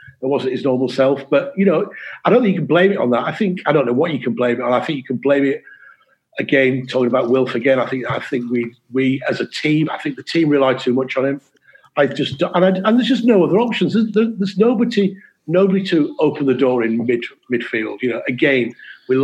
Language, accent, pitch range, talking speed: English, British, 135-210 Hz, 255 wpm